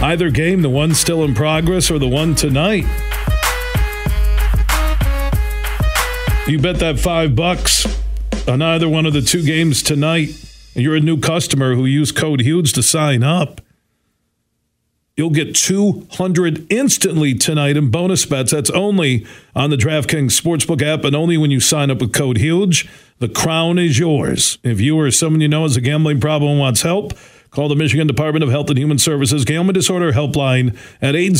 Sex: male